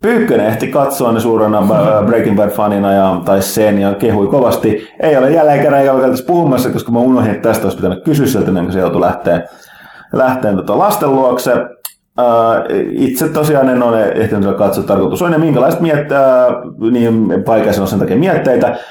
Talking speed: 160 wpm